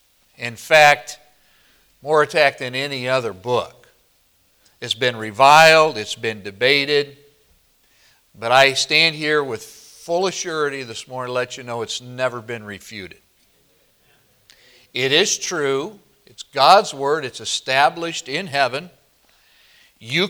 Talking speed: 125 wpm